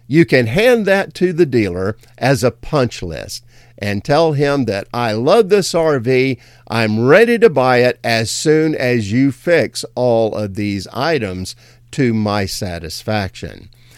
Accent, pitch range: American, 110-155 Hz